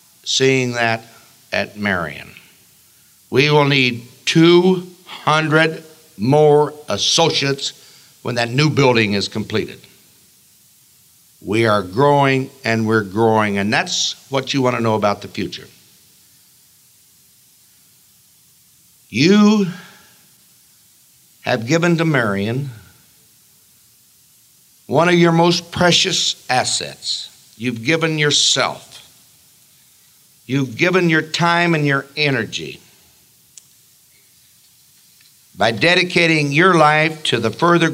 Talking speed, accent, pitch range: 95 wpm, American, 120-170 Hz